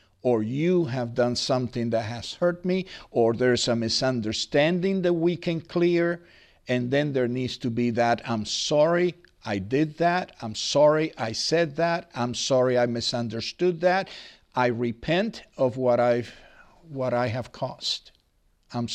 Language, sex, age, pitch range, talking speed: English, male, 60-79, 125-175 Hz, 155 wpm